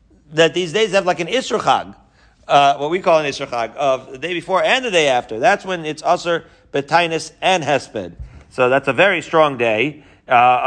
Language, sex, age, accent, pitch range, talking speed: English, male, 40-59, American, 125-165 Hz, 200 wpm